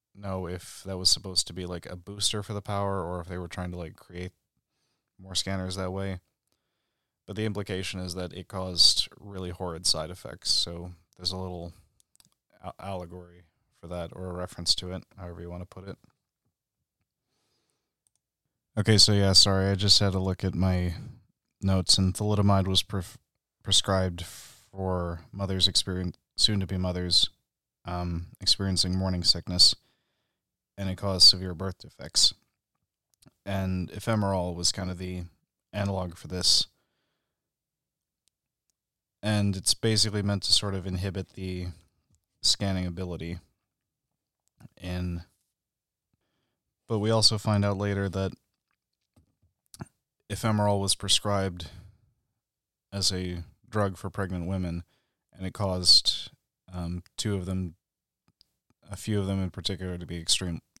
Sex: male